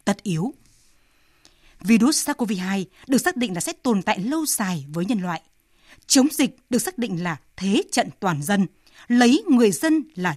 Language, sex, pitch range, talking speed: Vietnamese, female, 190-265 Hz, 175 wpm